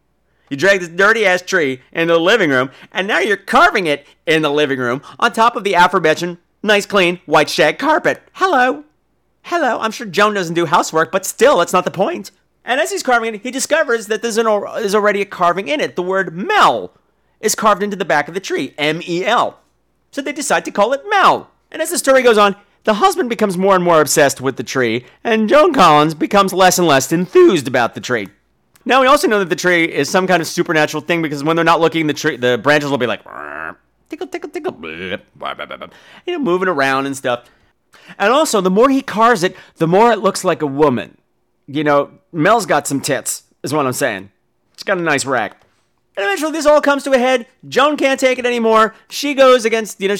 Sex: male